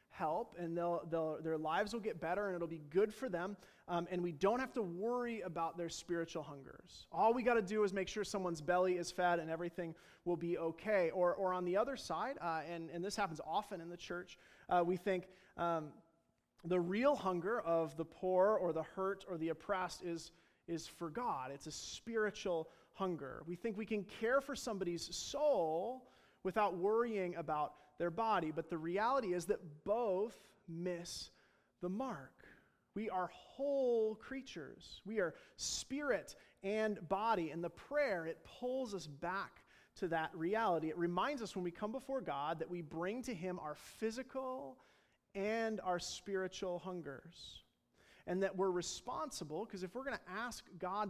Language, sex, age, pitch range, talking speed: English, male, 30-49, 170-215 Hz, 180 wpm